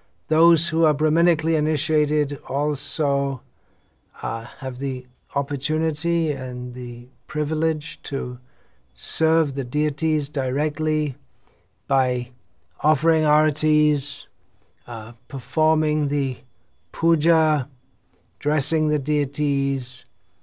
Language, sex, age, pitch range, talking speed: English, male, 60-79, 125-155 Hz, 80 wpm